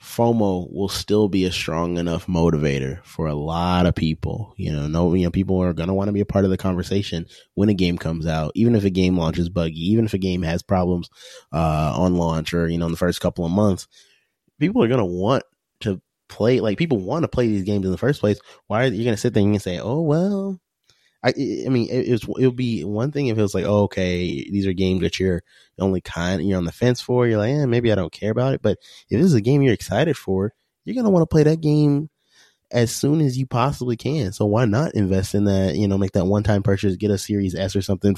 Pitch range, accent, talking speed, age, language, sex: 90-110 Hz, American, 265 wpm, 20-39, English, male